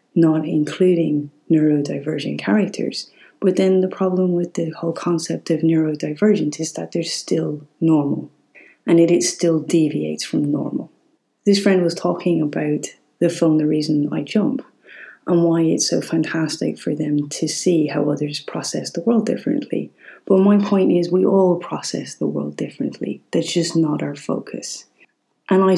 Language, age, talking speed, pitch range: English, 30-49, 160 wpm, 150-180 Hz